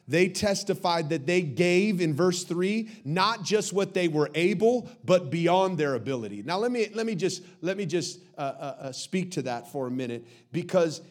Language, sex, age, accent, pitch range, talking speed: English, male, 40-59, American, 130-175 Hz, 195 wpm